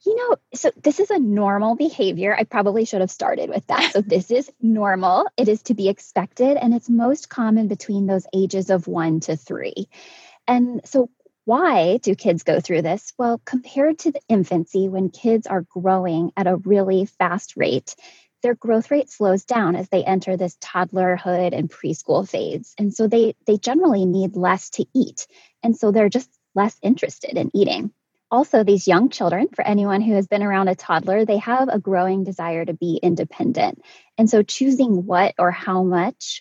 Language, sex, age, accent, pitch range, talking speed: English, female, 20-39, American, 185-245 Hz, 190 wpm